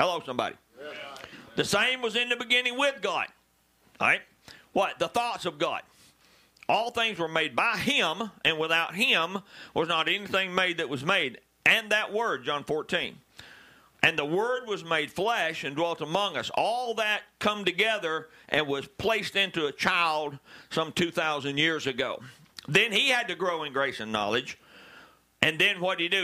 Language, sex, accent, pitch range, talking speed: English, male, American, 135-190 Hz, 175 wpm